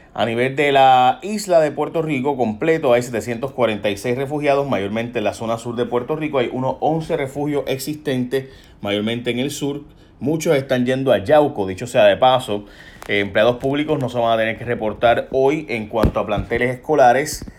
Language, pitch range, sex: Spanish, 110-135 Hz, male